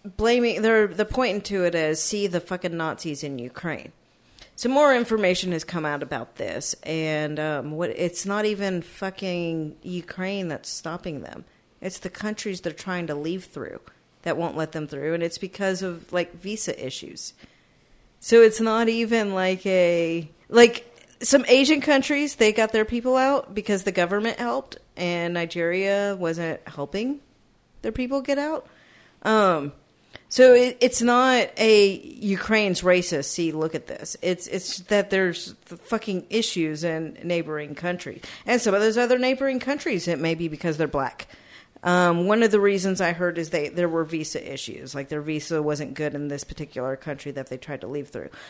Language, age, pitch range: English, 40-59, 165-215 Hz